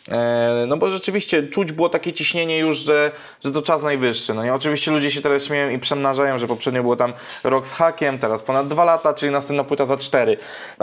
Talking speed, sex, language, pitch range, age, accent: 215 wpm, male, Portuguese, 130-160 Hz, 20-39, Polish